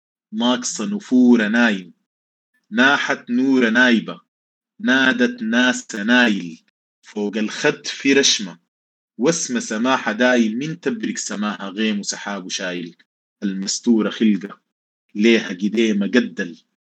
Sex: male